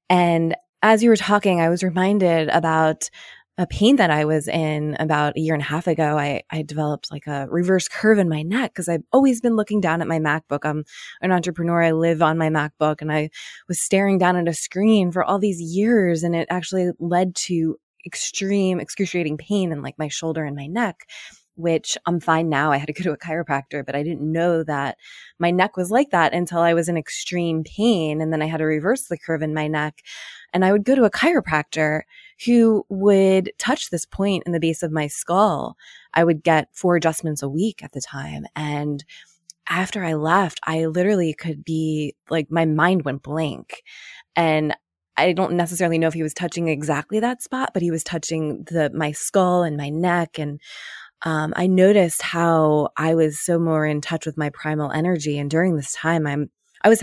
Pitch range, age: 155-185 Hz, 20-39